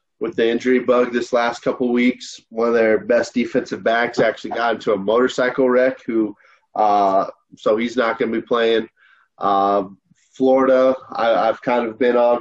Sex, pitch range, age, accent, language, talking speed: male, 110-125 Hz, 20-39, American, English, 185 wpm